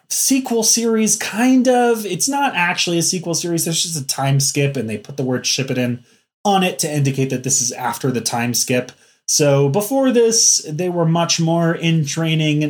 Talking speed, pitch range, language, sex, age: 205 wpm, 135-175 Hz, English, male, 20-39